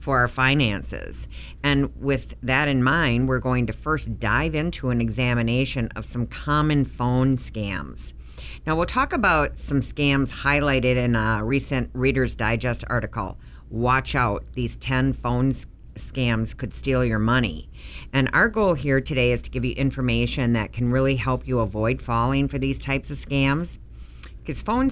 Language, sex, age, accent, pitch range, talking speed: English, female, 50-69, American, 115-145 Hz, 165 wpm